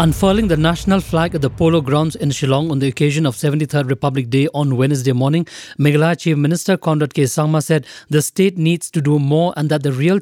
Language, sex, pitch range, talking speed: English, male, 145-165 Hz, 215 wpm